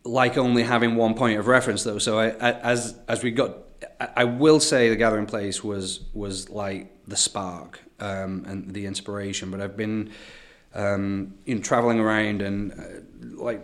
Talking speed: 180 wpm